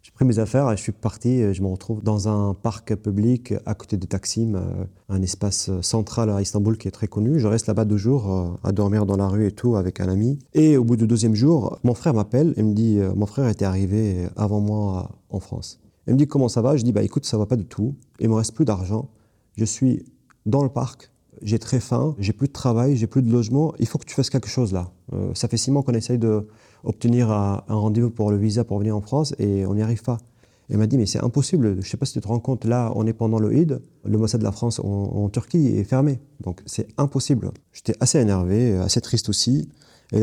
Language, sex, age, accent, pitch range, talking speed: French, male, 30-49, French, 100-125 Hz, 250 wpm